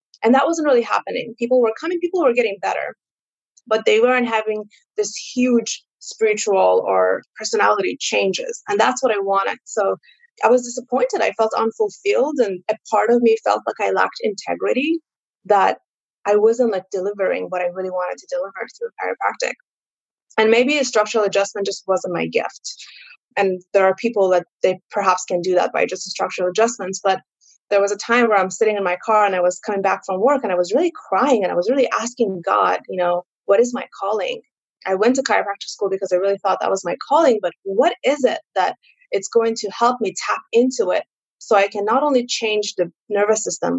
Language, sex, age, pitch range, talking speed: English, female, 20-39, 195-255 Hz, 210 wpm